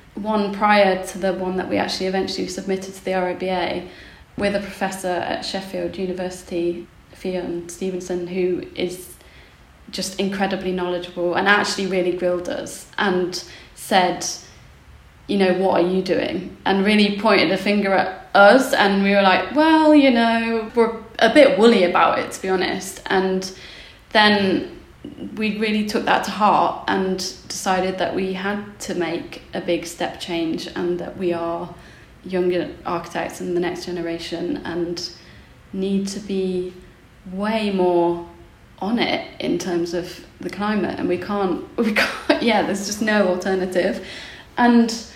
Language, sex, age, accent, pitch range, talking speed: English, female, 20-39, British, 180-210 Hz, 155 wpm